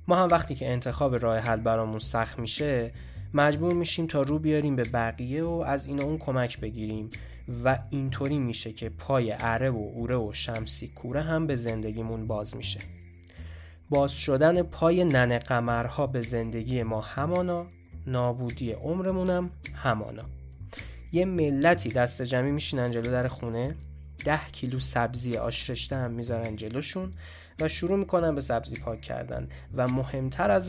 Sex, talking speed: male, 155 wpm